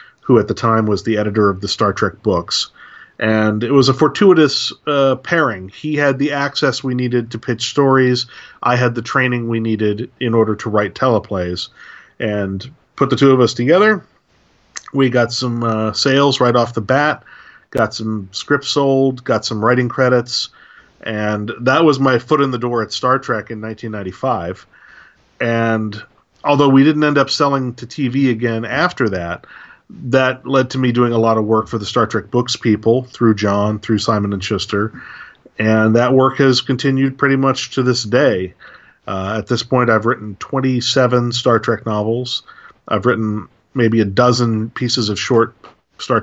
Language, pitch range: English, 110-130 Hz